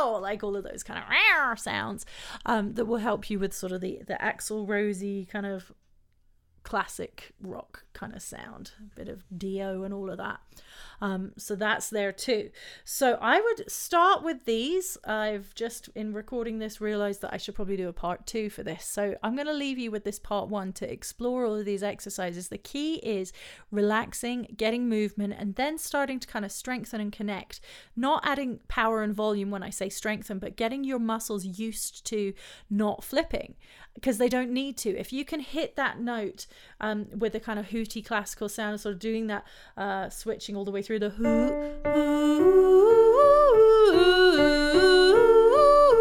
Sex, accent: female, British